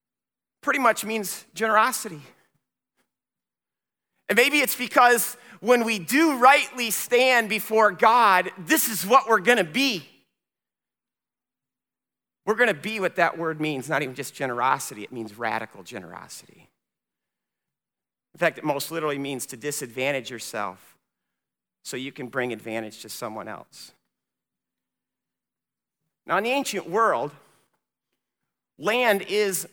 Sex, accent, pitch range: male, American, 160-220 Hz